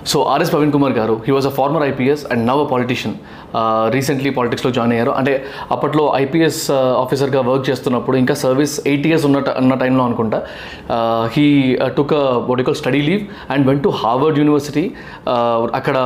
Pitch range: 125-150 Hz